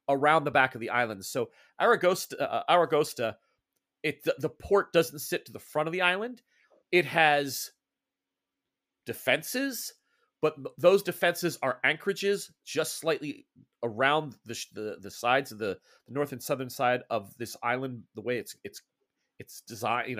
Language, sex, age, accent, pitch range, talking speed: English, male, 30-49, American, 130-180 Hz, 160 wpm